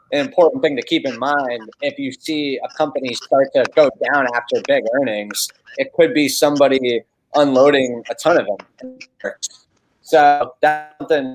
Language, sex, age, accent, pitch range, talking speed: English, male, 20-39, American, 130-155 Hz, 165 wpm